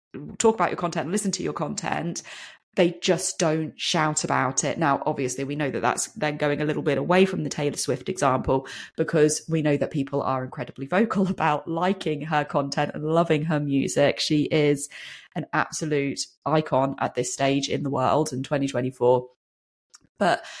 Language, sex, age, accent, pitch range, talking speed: English, female, 20-39, British, 150-175 Hz, 180 wpm